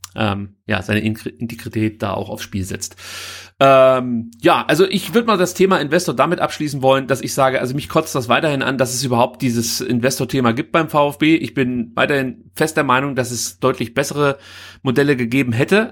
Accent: German